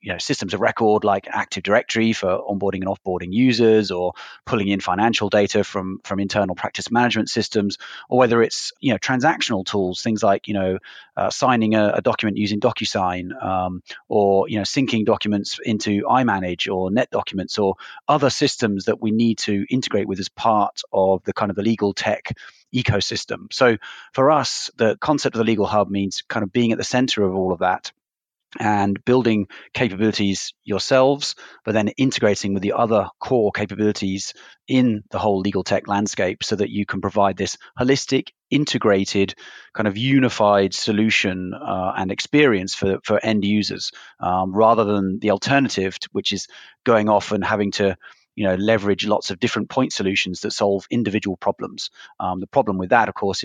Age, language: 30-49, English